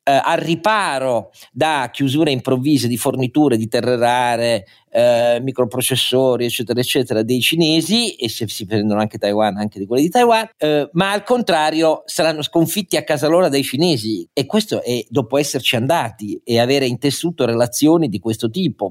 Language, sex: Italian, male